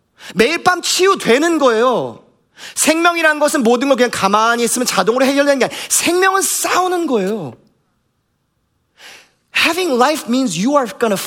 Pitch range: 195-260 Hz